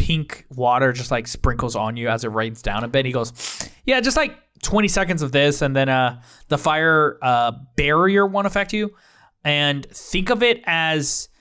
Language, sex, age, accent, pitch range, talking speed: English, male, 20-39, American, 120-165 Hz, 195 wpm